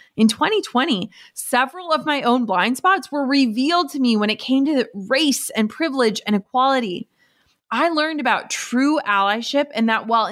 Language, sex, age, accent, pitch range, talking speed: English, female, 30-49, American, 215-275 Hz, 170 wpm